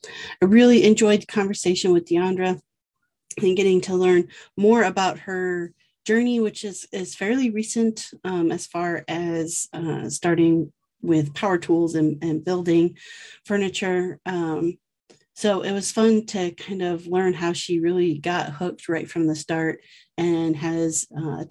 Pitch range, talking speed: 170-210 Hz, 150 wpm